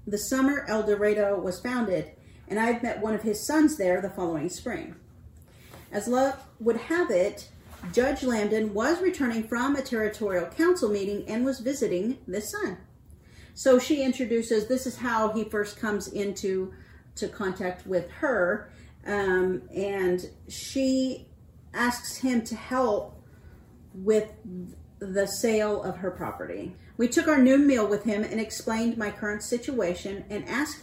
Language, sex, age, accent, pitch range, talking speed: English, female, 40-59, American, 195-240 Hz, 150 wpm